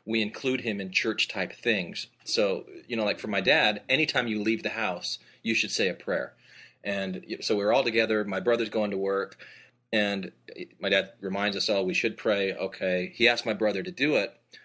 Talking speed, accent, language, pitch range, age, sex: 205 wpm, American, English, 100-115 Hz, 30-49, male